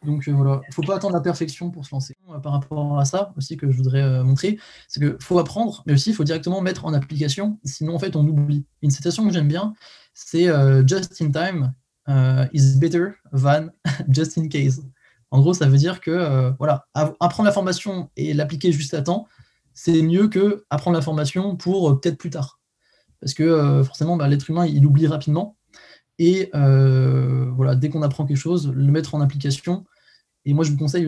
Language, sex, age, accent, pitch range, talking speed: French, male, 20-39, French, 140-175 Hz, 215 wpm